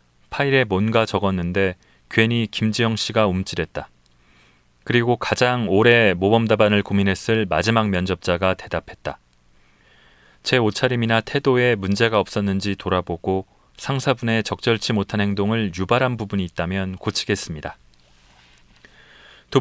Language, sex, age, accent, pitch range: Korean, male, 30-49, native, 95-125 Hz